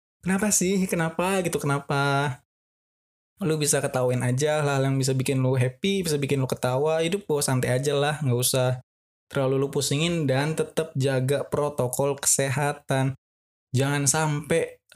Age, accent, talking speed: 20-39, native, 145 wpm